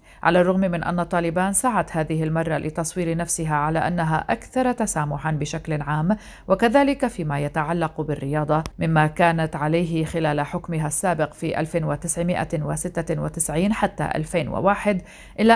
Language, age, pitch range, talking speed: Arabic, 40-59, 155-175 Hz, 120 wpm